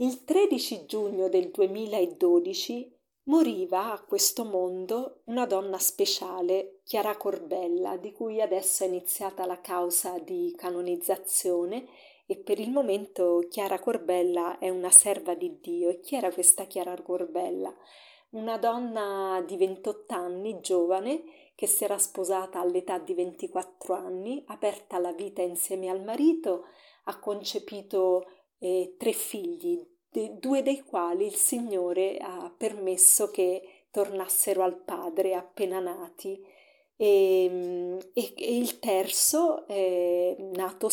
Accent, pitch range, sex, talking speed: native, 185-225 Hz, female, 125 wpm